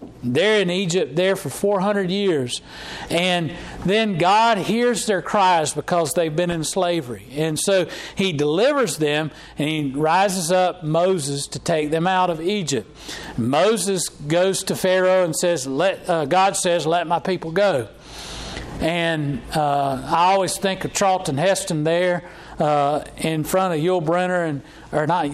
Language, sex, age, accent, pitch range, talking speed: English, male, 40-59, American, 150-185 Hz, 155 wpm